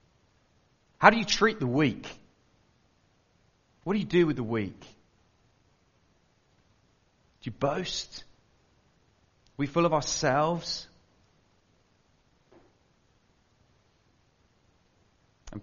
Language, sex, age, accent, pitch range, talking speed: English, male, 40-59, British, 100-140 Hz, 85 wpm